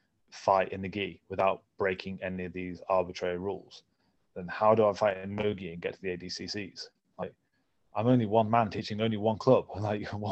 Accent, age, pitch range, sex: British, 30-49, 90-110 Hz, male